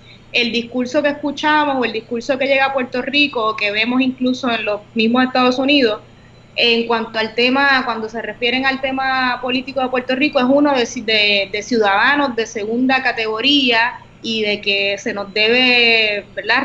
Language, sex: Spanish, female